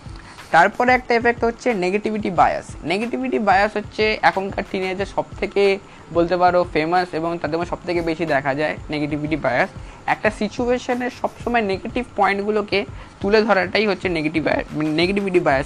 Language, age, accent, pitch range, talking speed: Bengali, 20-39, native, 170-215 Hz, 110 wpm